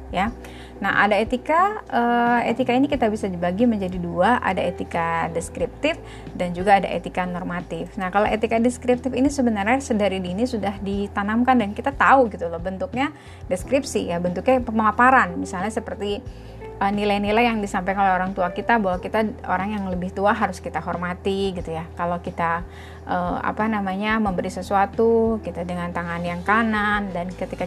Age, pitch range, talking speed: 30-49, 180-245 Hz, 160 wpm